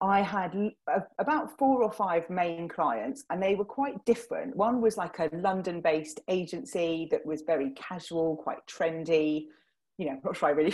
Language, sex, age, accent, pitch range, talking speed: English, female, 30-49, British, 165-220 Hz, 180 wpm